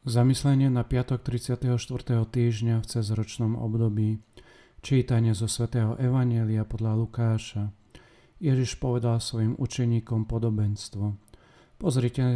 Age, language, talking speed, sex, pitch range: 40-59, Slovak, 95 wpm, male, 110-125 Hz